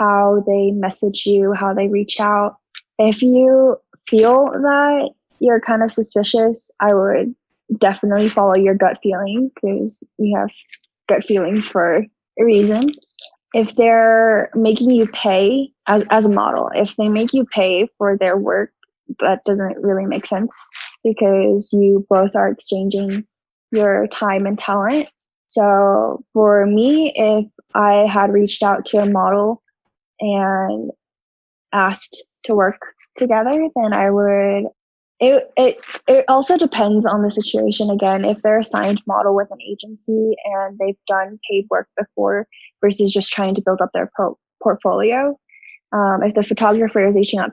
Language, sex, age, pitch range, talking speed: English, female, 10-29, 200-225 Hz, 150 wpm